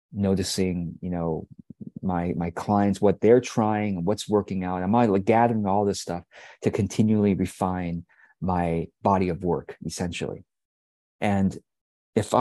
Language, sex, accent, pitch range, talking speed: English, male, American, 90-120 Hz, 140 wpm